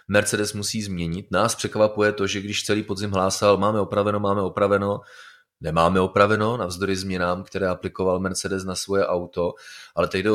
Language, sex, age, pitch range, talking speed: Czech, male, 30-49, 85-100 Hz, 160 wpm